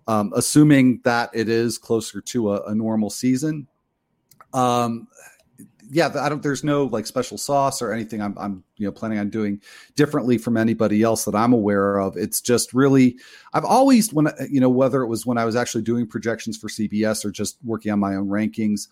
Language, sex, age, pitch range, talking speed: English, male, 40-59, 100-115 Hz, 200 wpm